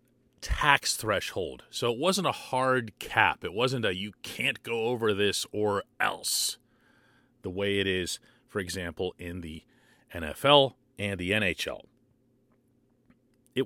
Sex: male